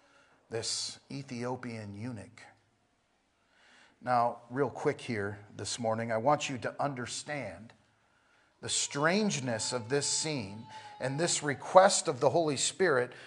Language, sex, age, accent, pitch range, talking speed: English, male, 40-59, American, 130-180 Hz, 120 wpm